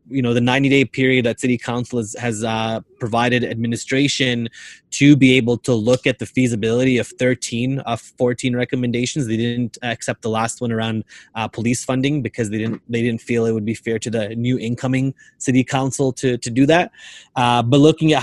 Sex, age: male, 20-39